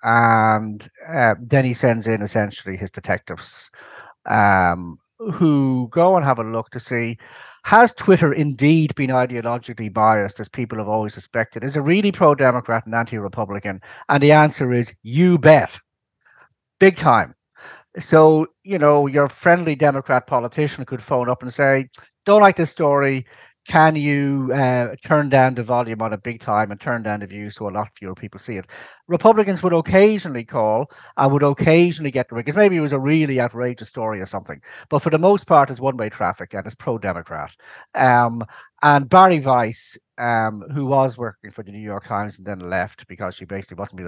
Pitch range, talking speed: 105-140 Hz, 180 wpm